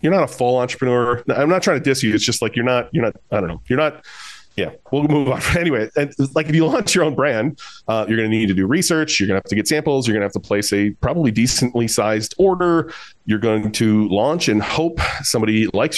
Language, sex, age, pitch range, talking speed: English, male, 30-49, 105-130 Hz, 260 wpm